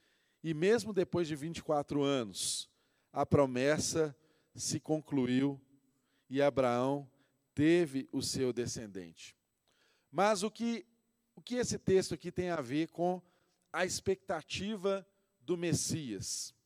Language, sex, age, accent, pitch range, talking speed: Portuguese, male, 40-59, Brazilian, 140-185 Hz, 110 wpm